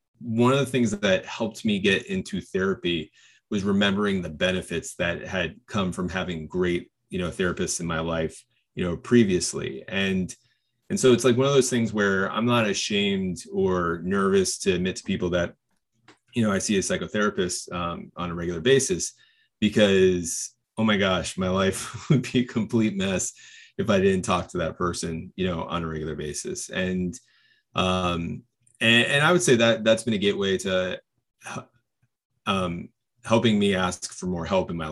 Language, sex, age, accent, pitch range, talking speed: English, male, 30-49, American, 90-125 Hz, 180 wpm